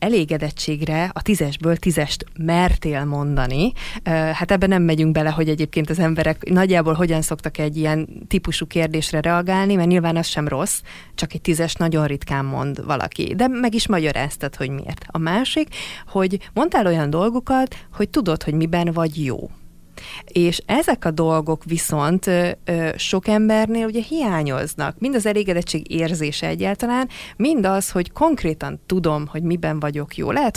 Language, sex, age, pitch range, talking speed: Hungarian, female, 30-49, 160-200 Hz, 150 wpm